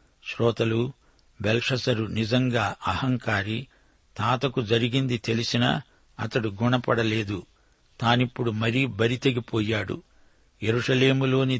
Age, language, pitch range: 60-79, Telugu, 110-130 Hz